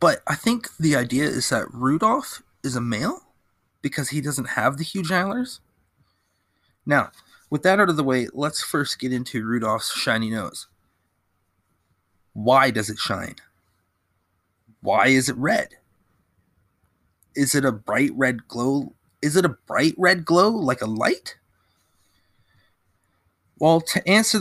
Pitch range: 105-155 Hz